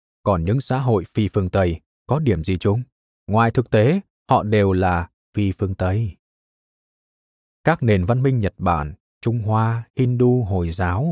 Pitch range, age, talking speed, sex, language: 95-130 Hz, 20-39, 165 wpm, male, Vietnamese